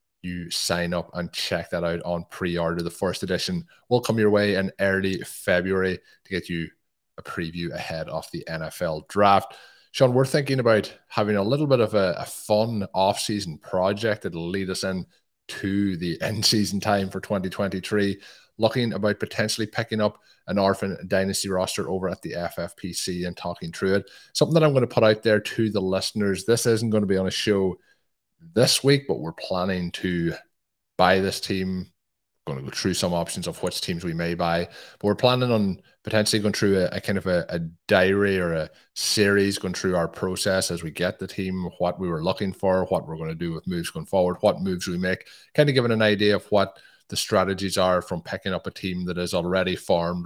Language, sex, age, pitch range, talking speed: English, male, 20-39, 90-105 Hz, 210 wpm